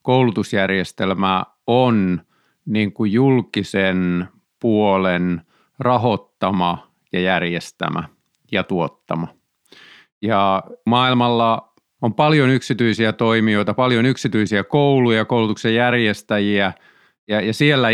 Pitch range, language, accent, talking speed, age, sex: 105-130 Hz, Finnish, native, 70 wpm, 50-69, male